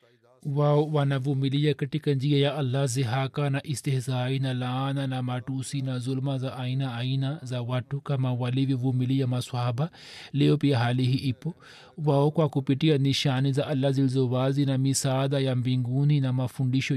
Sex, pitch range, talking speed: male, 135-150 Hz, 135 wpm